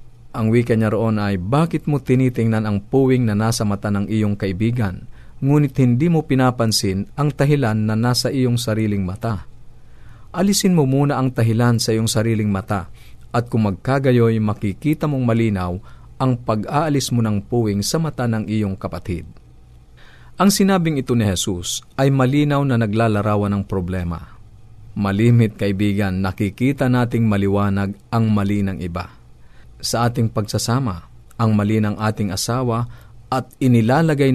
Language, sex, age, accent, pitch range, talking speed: Filipino, male, 50-69, native, 100-125 Hz, 140 wpm